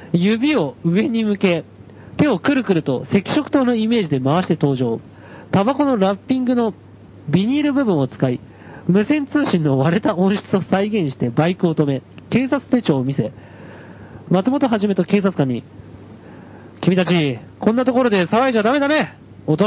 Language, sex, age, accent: Japanese, male, 40-59, native